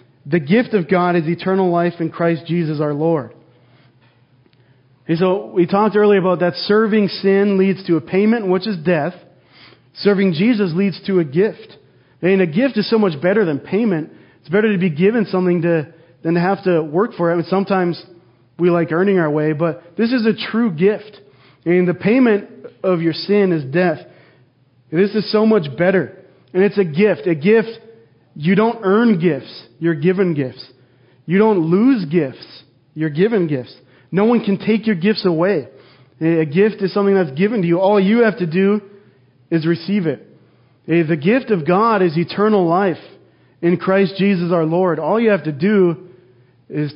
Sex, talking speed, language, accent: male, 180 wpm, English, American